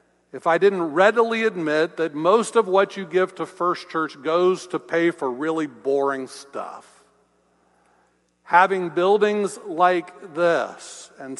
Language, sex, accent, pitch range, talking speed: English, male, American, 140-190 Hz, 135 wpm